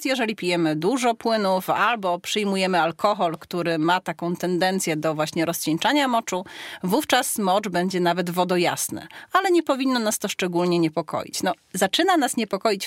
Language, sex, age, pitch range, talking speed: Polish, female, 30-49, 175-230 Hz, 140 wpm